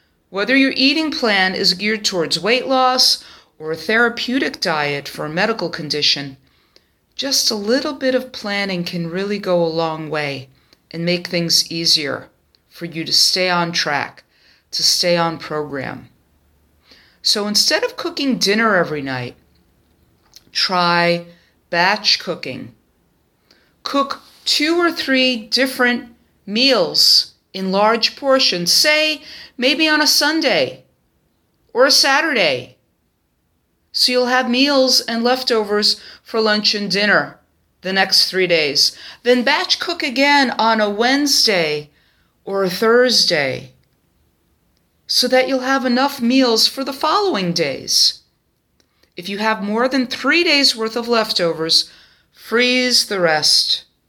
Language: English